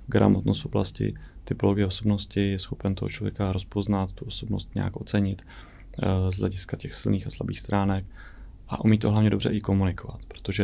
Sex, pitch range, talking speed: male, 95-105 Hz, 160 wpm